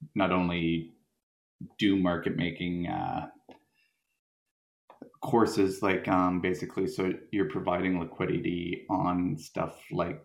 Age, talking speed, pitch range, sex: 20-39, 100 wpm, 80-85 Hz, male